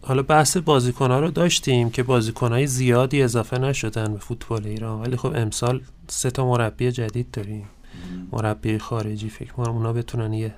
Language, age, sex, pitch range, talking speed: Persian, 30-49, male, 110-125 Hz, 160 wpm